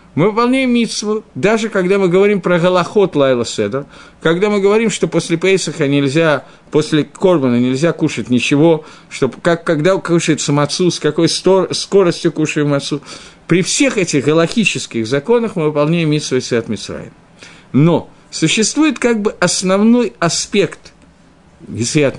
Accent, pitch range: native, 135-190 Hz